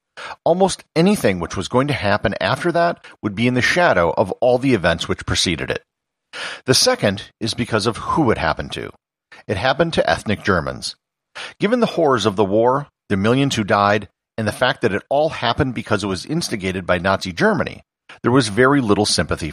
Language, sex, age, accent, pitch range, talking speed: English, male, 50-69, American, 95-135 Hz, 195 wpm